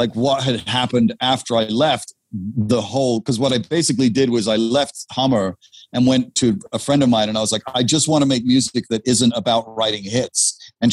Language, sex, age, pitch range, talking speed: Italian, male, 40-59, 115-135 Hz, 225 wpm